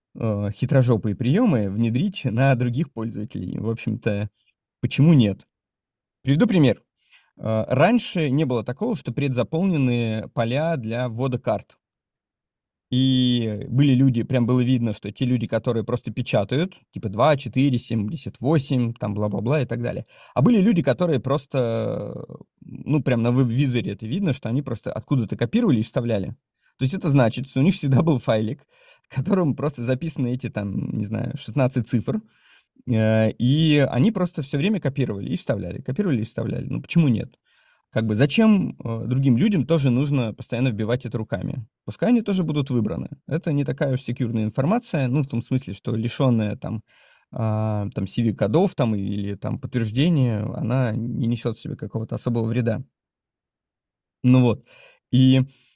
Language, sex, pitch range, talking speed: Russian, male, 115-145 Hz, 150 wpm